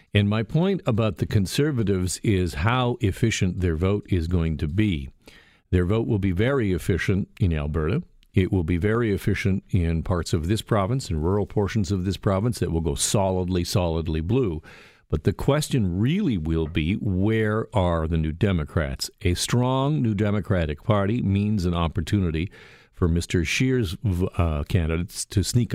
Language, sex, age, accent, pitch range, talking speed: English, male, 50-69, American, 85-115 Hz, 165 wpm